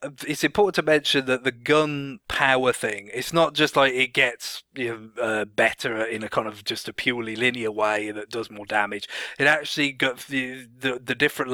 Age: 30-49